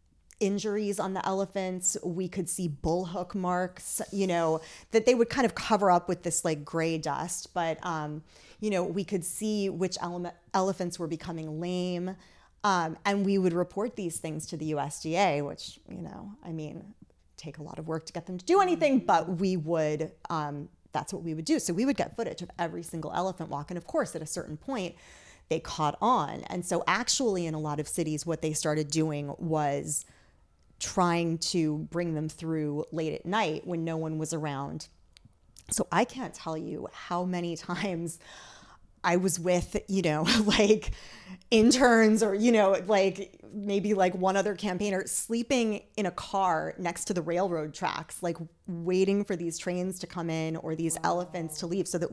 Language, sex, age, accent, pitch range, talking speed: English, female, 30-49, American, 160-200 Hz, 190 wpm